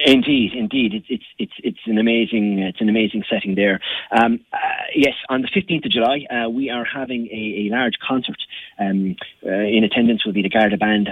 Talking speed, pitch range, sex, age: 205 wpm, 100-120 Hz, male, 30-49